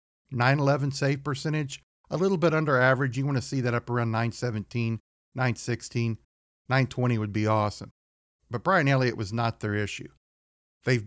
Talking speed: 155 wpm